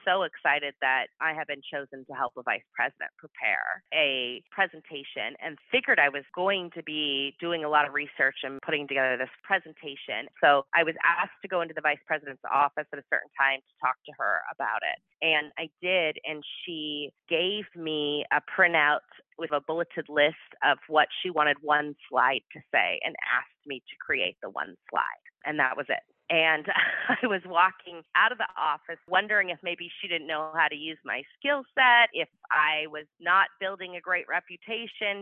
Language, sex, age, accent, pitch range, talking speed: English, female, 30-49, American, 150-185 Hz, 195 wpm